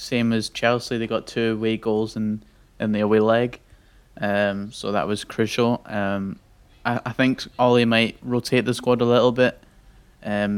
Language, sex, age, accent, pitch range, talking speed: English, male, 20-39, British, 110-125 Hz, 180 wpm